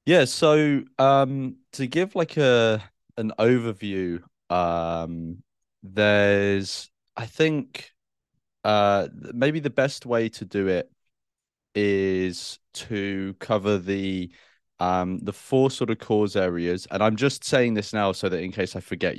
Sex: male